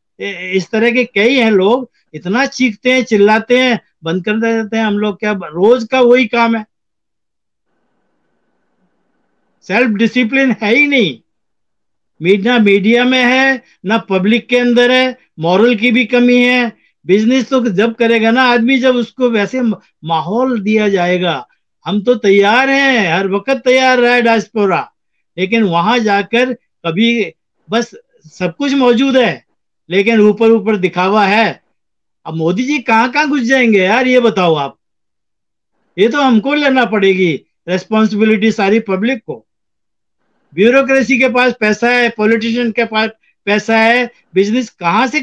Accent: native